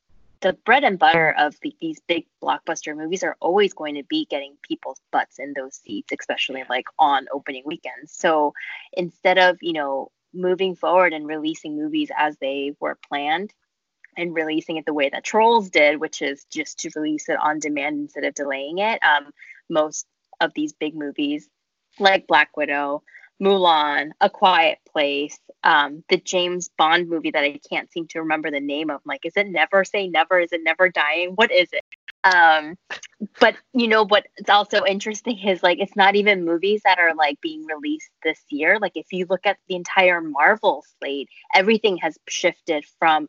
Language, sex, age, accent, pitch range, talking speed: English, female, 20-39, American, 155-205 Hz, 185 wpm